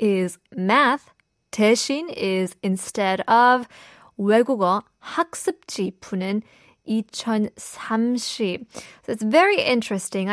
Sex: female